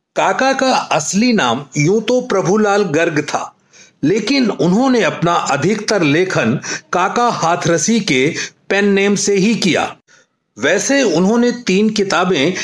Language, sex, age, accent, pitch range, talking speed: Hindi, male, 40-59, native, 170-235 Hz, 125 wpm